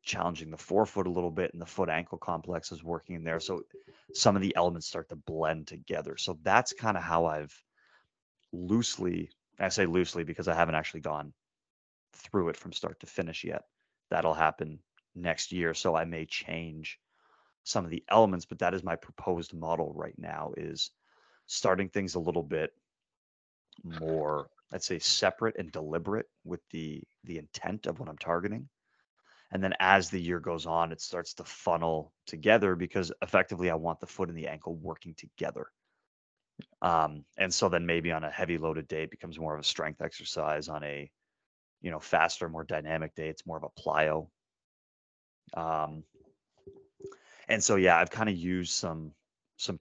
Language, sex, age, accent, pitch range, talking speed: English, male, 30-49, American, 80-95 Hz, 180 wpm